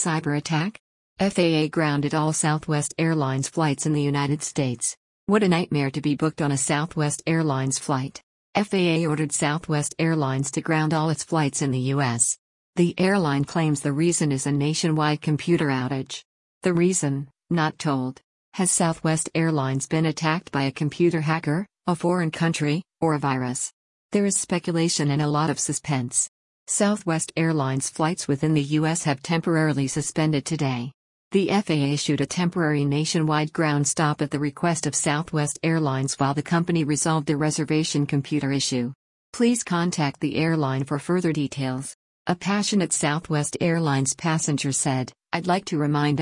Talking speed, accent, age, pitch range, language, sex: 155 wpm, American, 50-69, 145-165 Hz, English, female